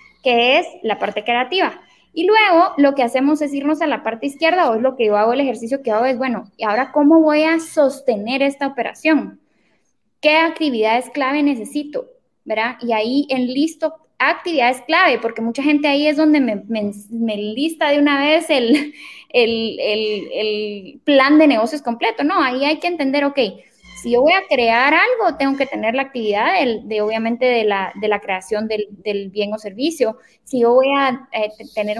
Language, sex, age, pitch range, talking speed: Spanish, female, 10-29, 225-290 Hz, 195 wpm